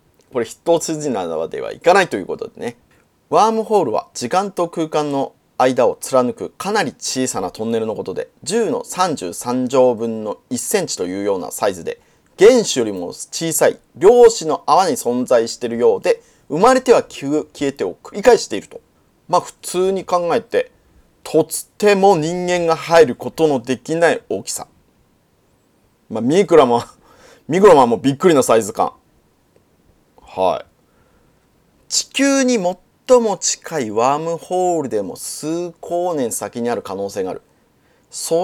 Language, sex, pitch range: Japanese, male, 150-230 Hz